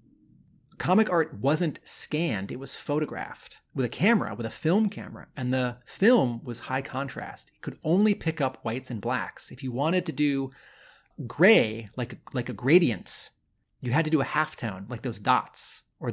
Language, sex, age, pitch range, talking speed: English, male, 30-49, 115-160 Hz, 180 wpm